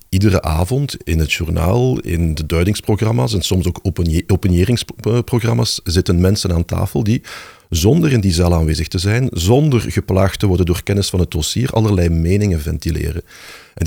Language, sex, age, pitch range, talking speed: Dutch, male, 50-69, 85-110 Hz, 160 wpm